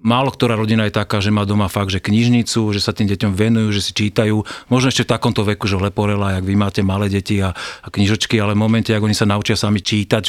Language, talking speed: Czech, 255 wpm